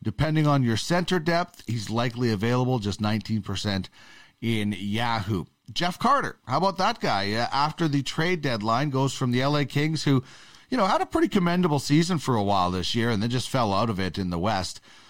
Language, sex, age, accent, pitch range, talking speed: English, male, 40-59, American, 110-150 Hz, 205 wpm